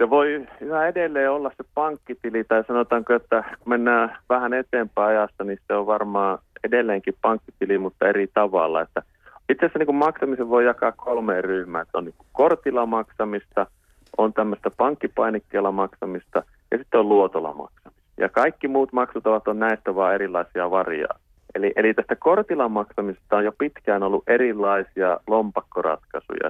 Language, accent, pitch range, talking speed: Finnish, native, 100-120 Hz, 145 wpm